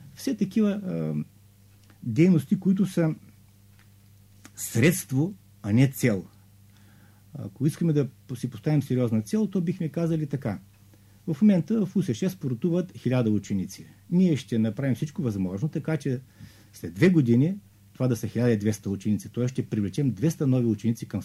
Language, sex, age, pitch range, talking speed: Bulgarian, male, 50-69, 100-160 Hz, 140 wpm